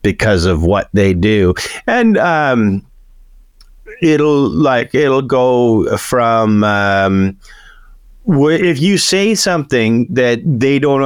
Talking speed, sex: 110 wpm, male